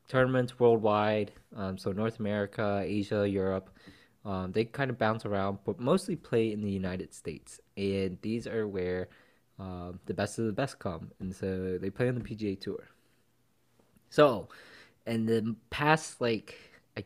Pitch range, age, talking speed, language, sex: 95-120 Hz, 20-39, 160 wpm, English, male